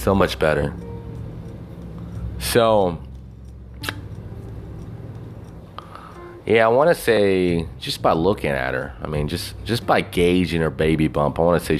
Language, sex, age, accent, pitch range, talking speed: English, male, 30-49, American, 80-100 Hz, 135 wpm